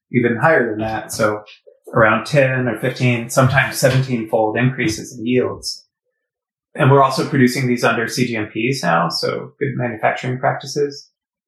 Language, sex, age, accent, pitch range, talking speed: English, male, 30-49, American, 115-135 Hz, 135 wpm